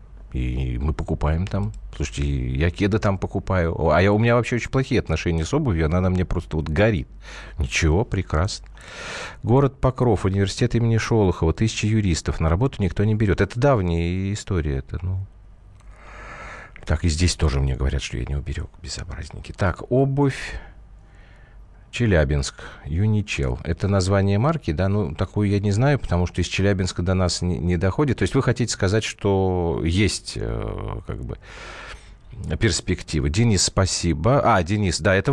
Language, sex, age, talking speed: Russian, male, 40-59, 160 wpm